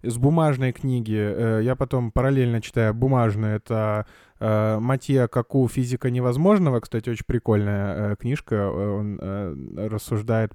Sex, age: male, 20-39